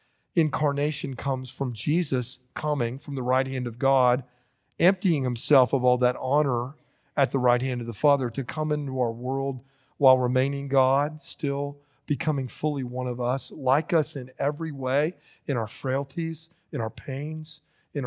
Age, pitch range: 40-59, 125-150 Hz